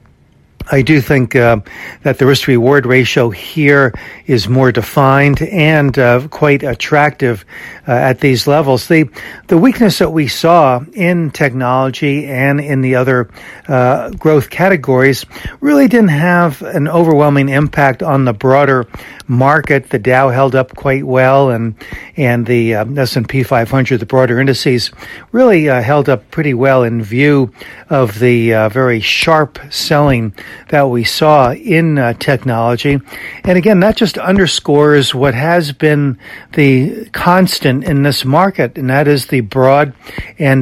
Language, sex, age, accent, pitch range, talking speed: English, male, 60-79, American, 125-150 Hz, 150 wpm